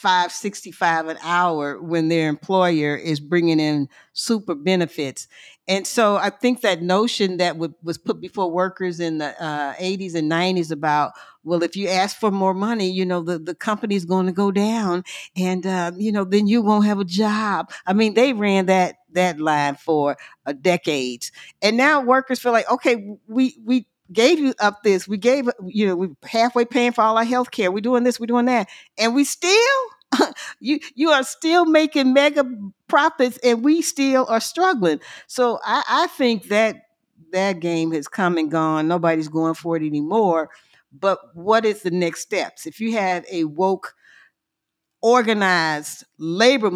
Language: English